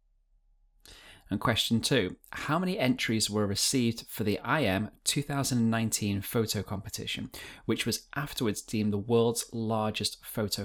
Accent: British